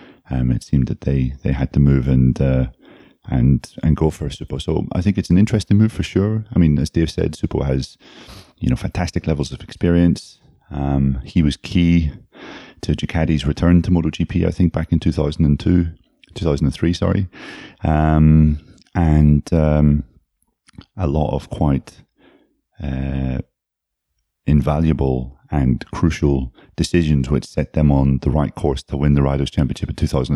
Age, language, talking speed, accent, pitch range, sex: 30-49, English, 170 wpm, British, 70-80 Hz, male